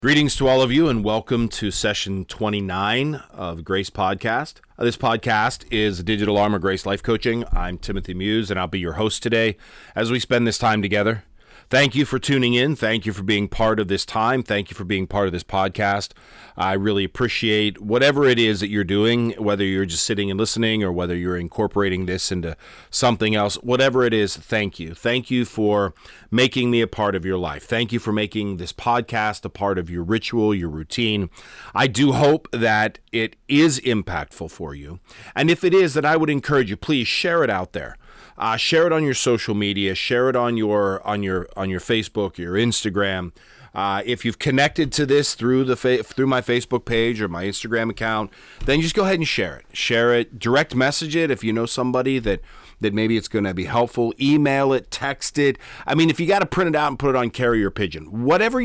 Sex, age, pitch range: male, 40-59, 100-130 Hz